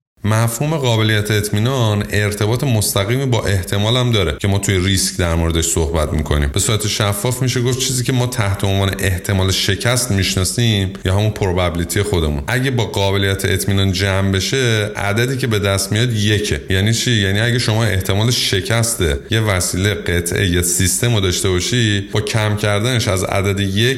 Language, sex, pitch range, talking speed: Persian, male, 100-120 Hz, 165 wpm